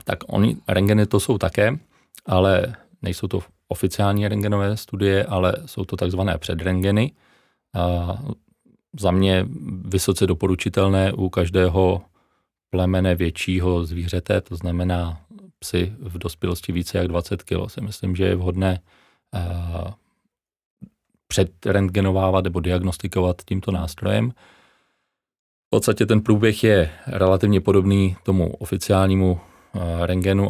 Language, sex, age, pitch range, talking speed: Czech, male, 30-49, 90-100 Hz, 110 wpm